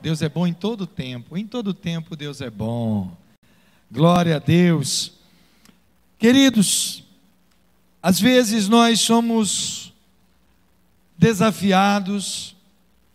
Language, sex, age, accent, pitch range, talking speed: Portuguese, male, 60-79, Brazilian, 185-230 Hz, 95 wpm